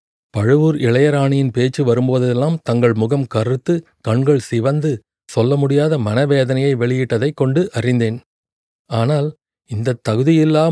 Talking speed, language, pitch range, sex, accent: 100 wpm, Tamil, 120-150 Hz, male, native